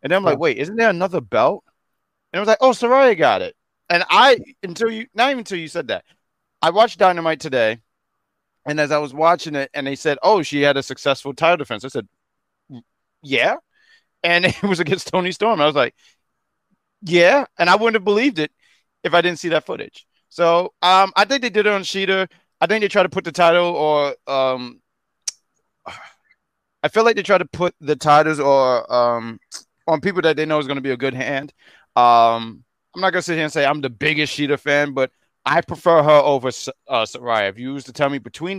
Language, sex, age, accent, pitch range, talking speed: English, male, 30-49, American, 130-180 Hz, 220 wpm